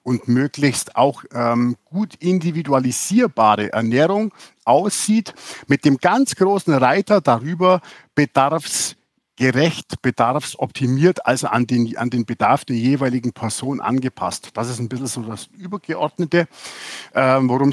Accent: German